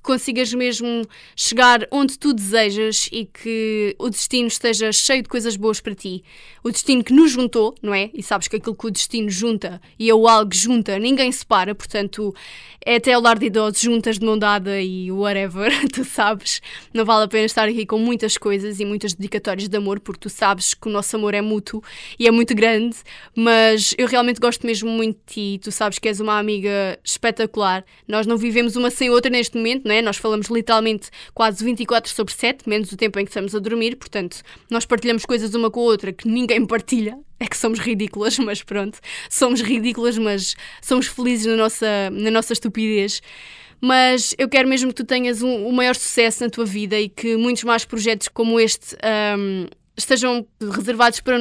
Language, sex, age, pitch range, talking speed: Portuguese, female, 20-39, 210-240 Hz, 200 wpm